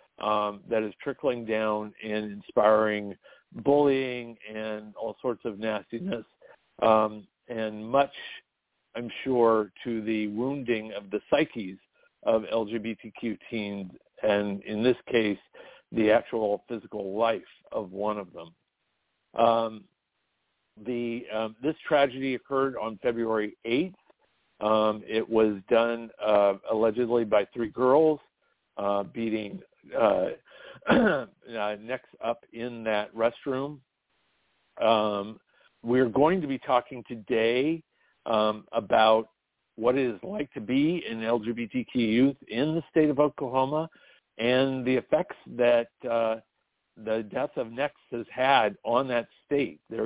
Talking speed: 125 wpm